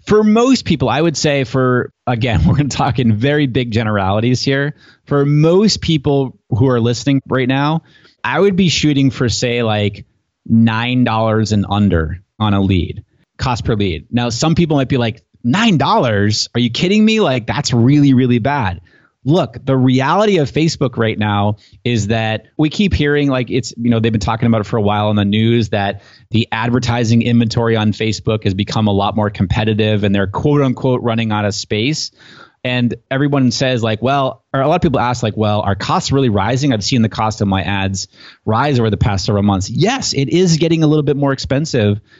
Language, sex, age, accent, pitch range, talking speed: English, male, 30-49, American, 110-140 Hz, 205 wpm